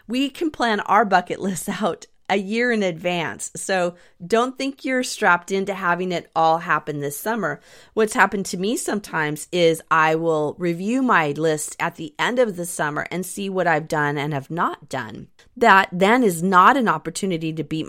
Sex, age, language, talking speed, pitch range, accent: female, 30-49, English, 190 wpm, 155-200 Hz, American